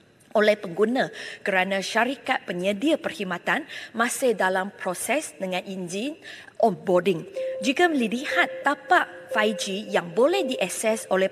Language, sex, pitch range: English, female, 180-230 Hz